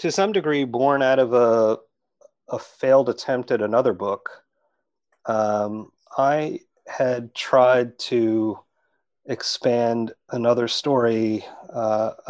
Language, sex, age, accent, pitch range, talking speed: English, male, 30-49, American, 105-125 Hz, 105 wpm